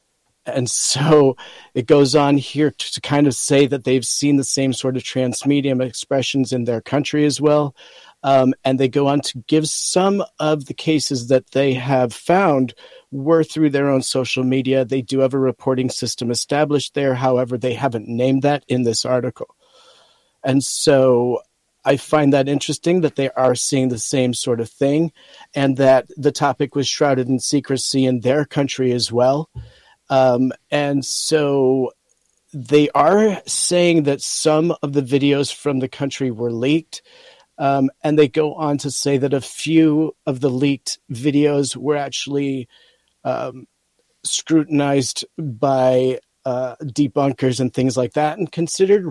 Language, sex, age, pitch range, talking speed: English, male, 40-59, 130-150 Hz, 160 wpm